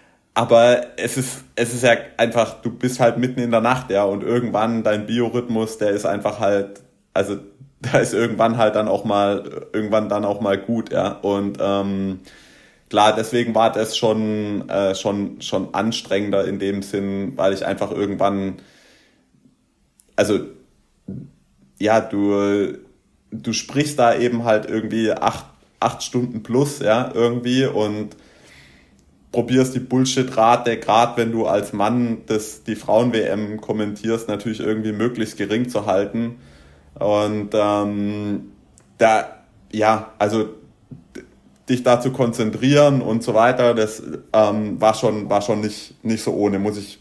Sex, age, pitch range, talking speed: male, 30-49, 100-120 Hz, 145 wpm